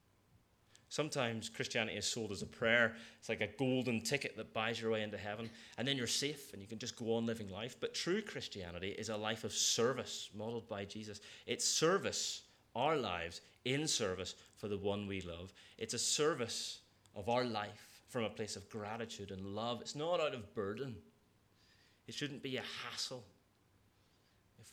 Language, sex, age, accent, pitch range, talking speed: English, male, 30-49, British, 95-115 Hz, 185 wpm